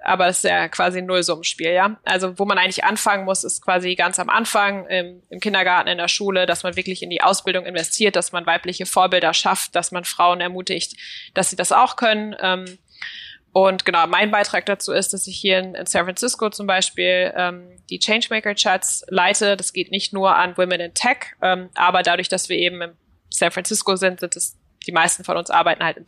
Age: 20-39